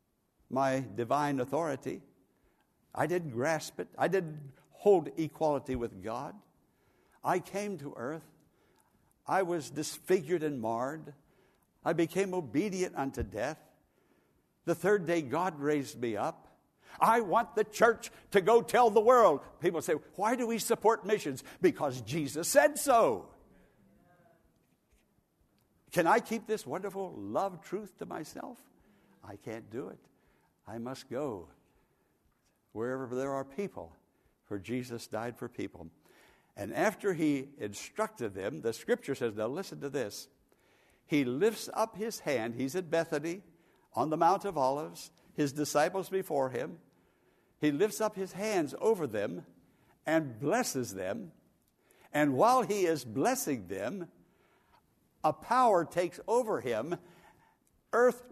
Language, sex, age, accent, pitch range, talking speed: English, male, 60-79, American, 135-205 Hz, 135 wpm